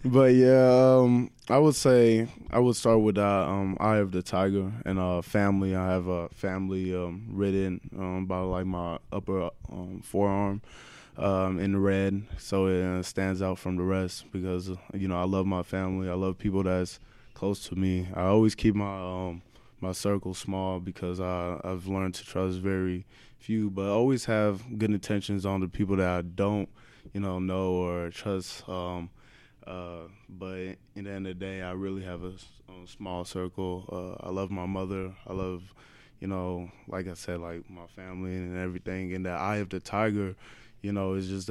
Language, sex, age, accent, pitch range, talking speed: English, male, 20-39, American, 90-100 Hz, 190 wpm